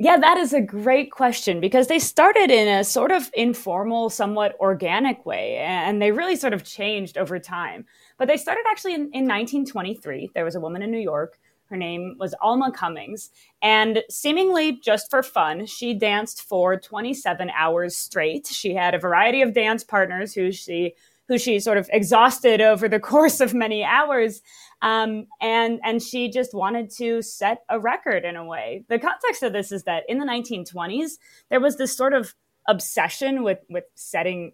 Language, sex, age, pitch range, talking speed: English, female, 20-39, 185-260 Hz, 185 wpm